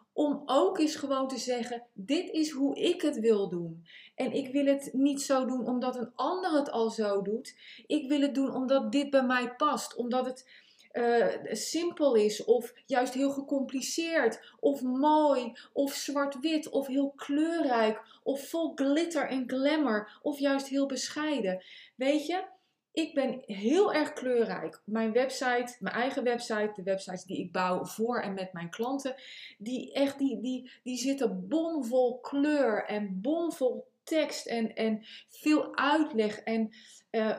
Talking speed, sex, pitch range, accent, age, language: 160 wpm, female, 220-280 Hz, Dutch, 20-39, Dutch